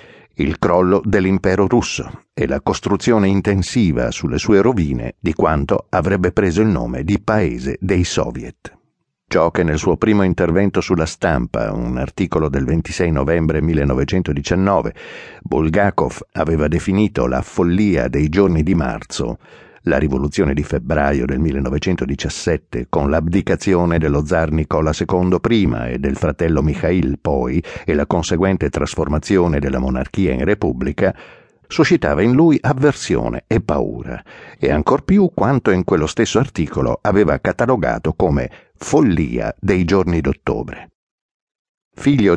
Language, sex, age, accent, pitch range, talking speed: Italian, male, 60-79, native, 75-100 Hz, 130 wpm